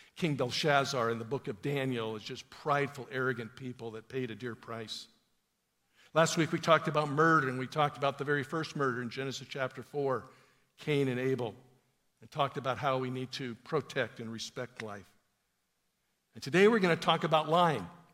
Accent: American